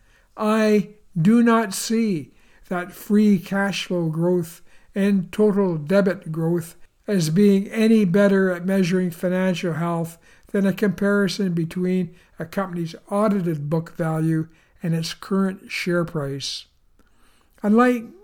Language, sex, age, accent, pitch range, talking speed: English, male, 60-79, American, 165-200 Hz, 120 wpm